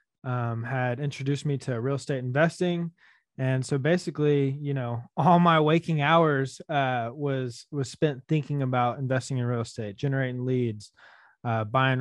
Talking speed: 155 wpm